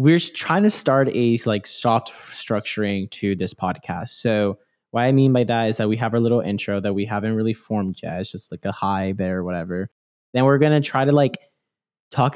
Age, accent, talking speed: 10-29, American, 225 wpm